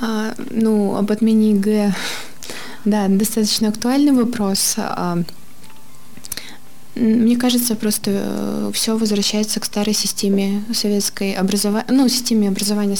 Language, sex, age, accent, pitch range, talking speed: Russian, female, 20-39, native, 200-220 Hz, 90 wpm